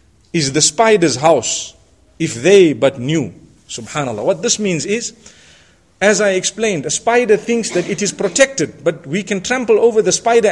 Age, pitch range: 40-59, 160-220 Hz